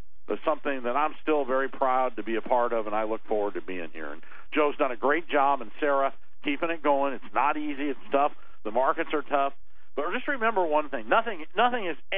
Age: 50-69